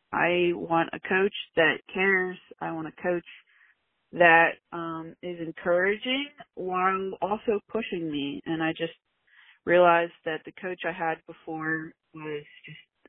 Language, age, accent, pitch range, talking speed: English, 30-49, American, 160-185 Hz, 140 wpm